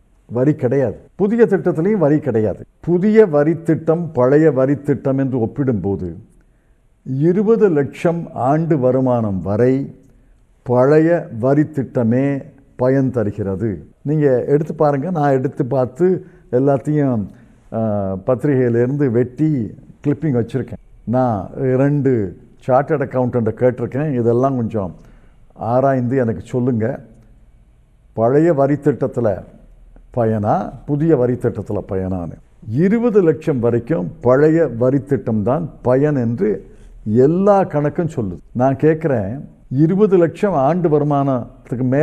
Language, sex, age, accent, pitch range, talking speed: Tamil, male, 50-69, native, 120-160 Hz, 85 wpm